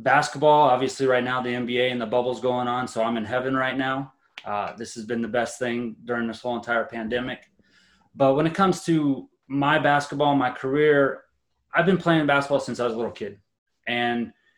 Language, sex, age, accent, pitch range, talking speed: English, male, 20-39, American, 120-140 Hz, 200 wpm